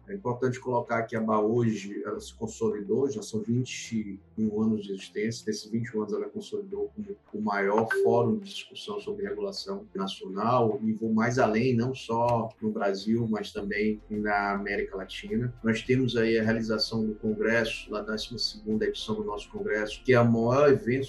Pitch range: 105-130 Hz